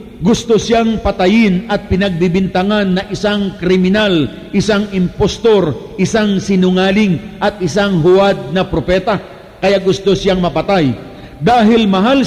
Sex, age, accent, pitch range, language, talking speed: male, 50-69, native, 180-215 Hz, Filipino, 115 wpm